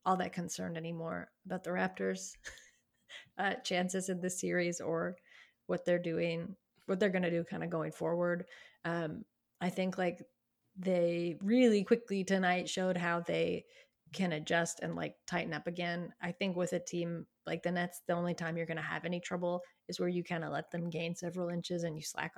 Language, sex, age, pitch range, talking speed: English, female, 30-49, 170-200 Hz, 195 wpm